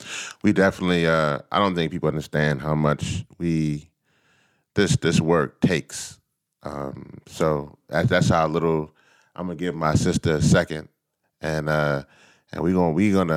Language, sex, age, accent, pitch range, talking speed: English, male, 30-49, American, 75-100 Hz, 155 wpm